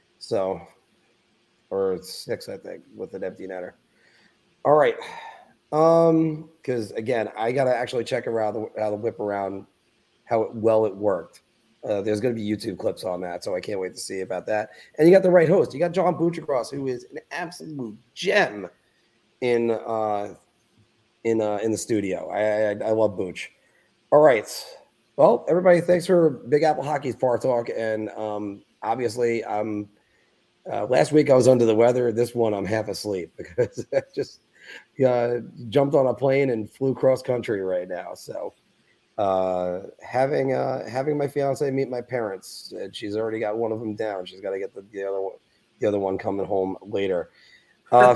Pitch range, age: 105-145 Hz, 30-49